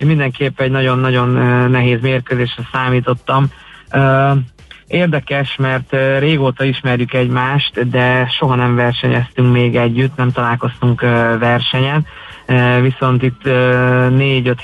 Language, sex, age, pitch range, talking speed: Hungarian, male, 20-39, 125-145 Hz, 100 wpm